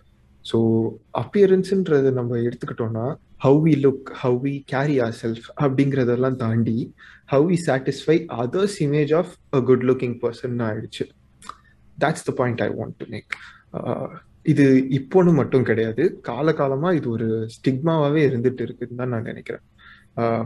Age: 30-49